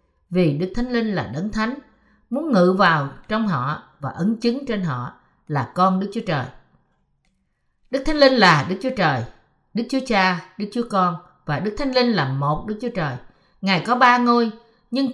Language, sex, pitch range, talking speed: Vietnamese, female, 175-245 Hz, 195 wpm